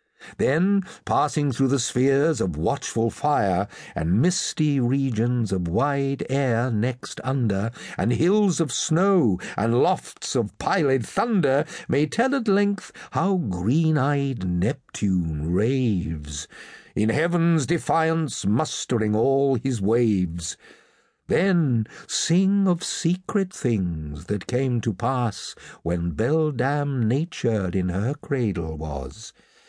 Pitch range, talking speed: 100-160 Hz, 115 wpm